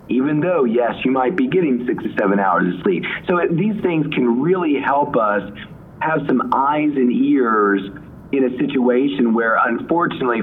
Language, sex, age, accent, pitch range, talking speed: English, male, 40-59, American, 115-170 Hz, 175 wpm